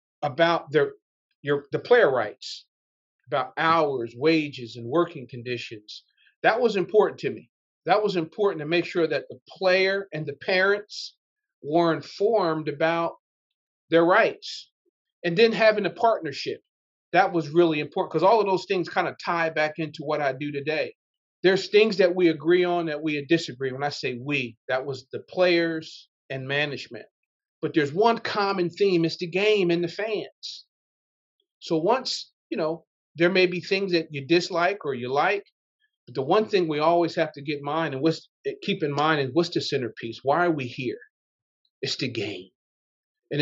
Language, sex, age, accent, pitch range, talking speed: English, male, 40-59, American, 150-190 Hz, 175 wpm